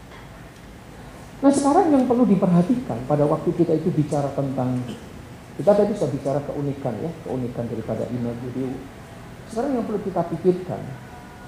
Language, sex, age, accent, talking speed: English, male, 50-69, Indonesian, 130 wpm